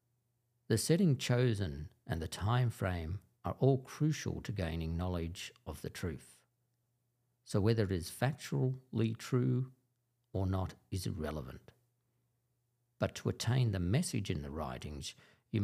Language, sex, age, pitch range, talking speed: English, male, 50-69, 100-125 Hz, 135 wpm